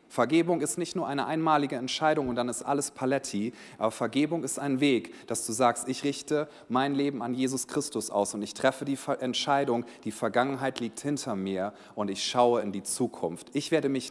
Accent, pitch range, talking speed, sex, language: German, 120-155 Hz, 200 wpm, male, German